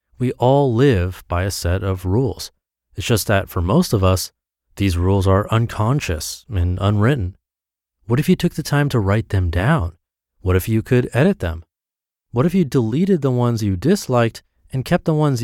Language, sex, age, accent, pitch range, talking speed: English, male, 30-49, American, 85-125 Hz, 190 wpm